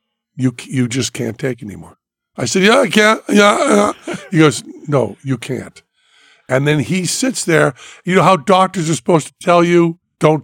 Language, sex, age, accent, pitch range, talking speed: English, male, 50-69, American, 130-155 Hz, 185 wpm